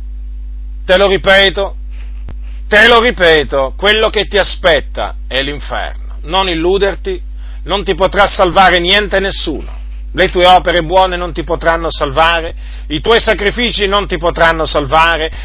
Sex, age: male, 50-69